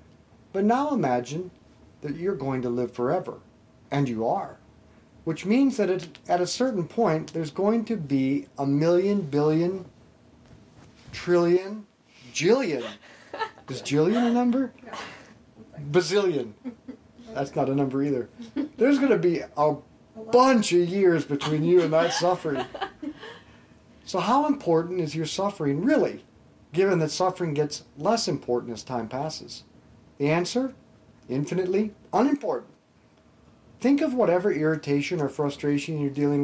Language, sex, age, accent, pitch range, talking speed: English, male, 40-59, American, 145-225 Hz, 130 wpm